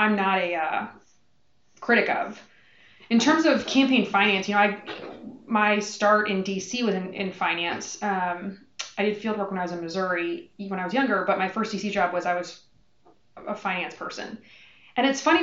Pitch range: 190-230 Hz